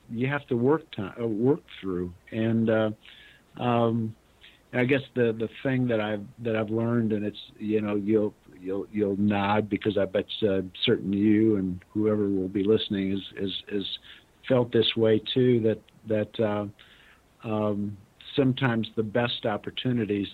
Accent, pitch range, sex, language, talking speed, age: American, 105-120 Hz, male, English, 160 wpm, 50-69